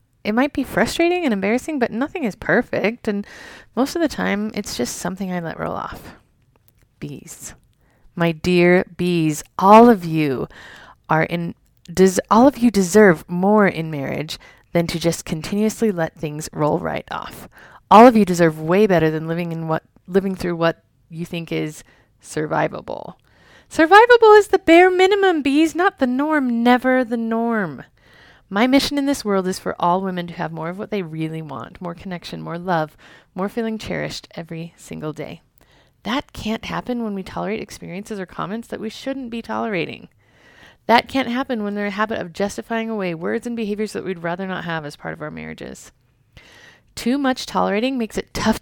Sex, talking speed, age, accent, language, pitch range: female, 180 wpm, 30-49, American, English, 165-240 Hz